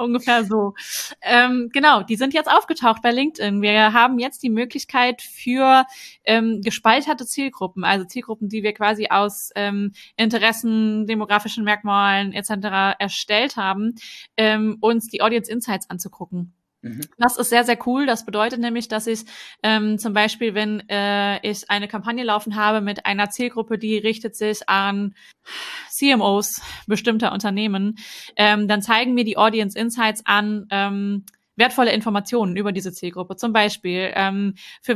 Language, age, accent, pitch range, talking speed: German, 20-39, German, 200-235 Hz, 150 wpm